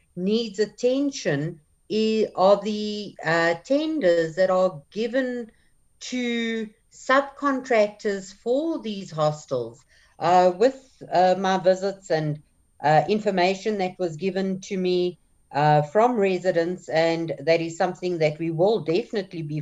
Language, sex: English, female